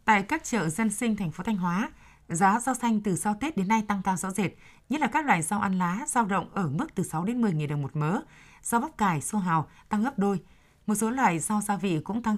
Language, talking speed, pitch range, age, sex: Vietnamese, 270 wpm, 175-225 Hz, 20-39, female